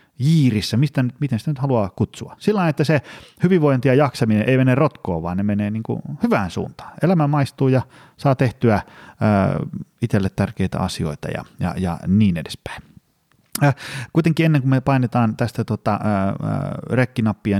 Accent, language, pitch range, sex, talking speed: native, Finnish, 95-130 Hz, male, 145 wpm